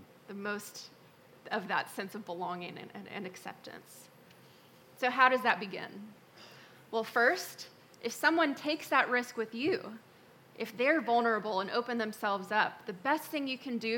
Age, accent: 20-39, American